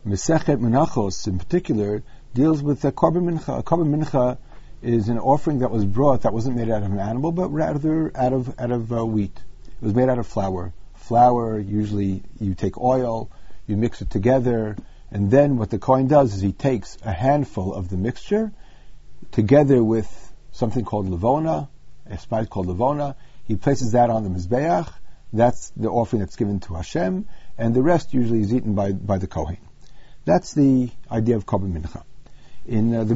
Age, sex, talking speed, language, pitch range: 50-69, male, 185 wpm, English, 95-135 Hz